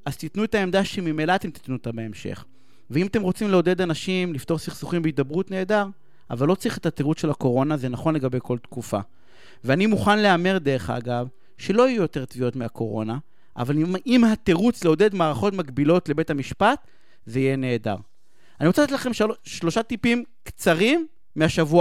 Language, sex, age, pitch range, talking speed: Hebrew, male, 30-49, 150-225 Hz, 160 wpm